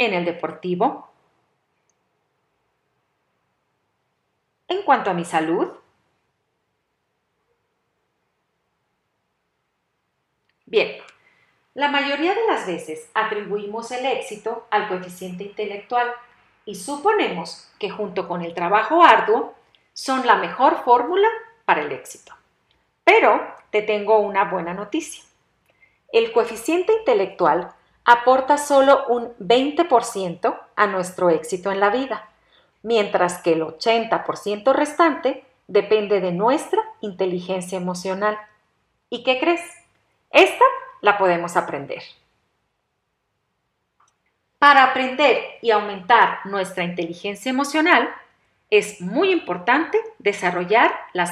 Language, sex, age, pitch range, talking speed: Spanish, female, 40-59, 190-290 Hz, 95 wpm